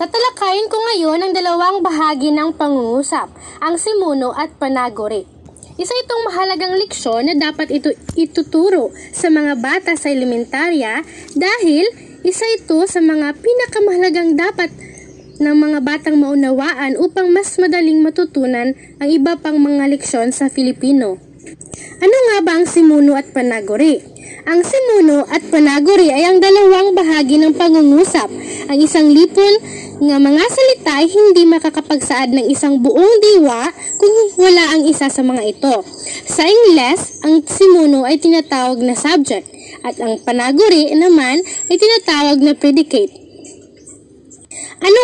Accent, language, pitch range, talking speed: native, Filipino, 290-365 Hz, 135 wpm